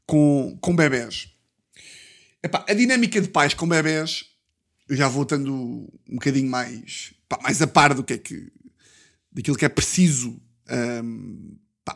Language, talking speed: Portuguese, 155 wpm